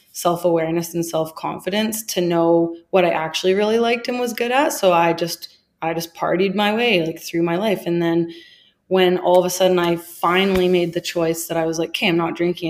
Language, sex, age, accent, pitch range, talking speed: English, female, 20-39, American, 170-190 Hz, 215 wpm